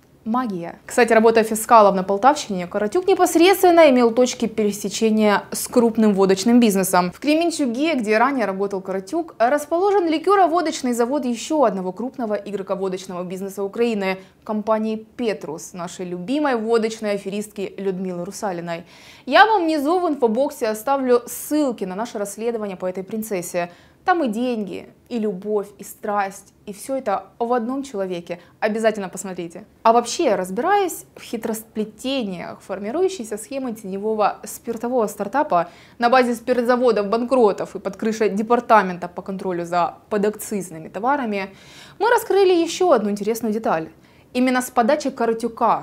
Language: Russian